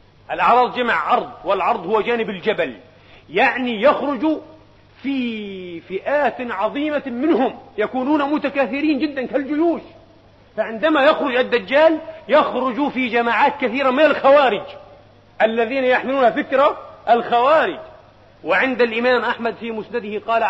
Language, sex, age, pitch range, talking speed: Arabic, male, 40-59, 220-270 Hz, 105 wpm